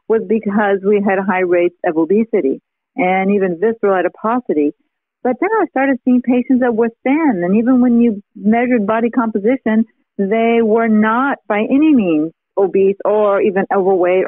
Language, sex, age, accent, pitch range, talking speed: English, female, 50-69, American, 200-240 Hz, 160 wpm